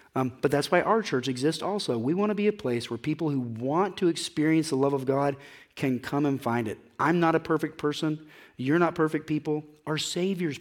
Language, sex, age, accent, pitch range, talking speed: English, male, 40-59, American, 130-165 Hz, 225 wpm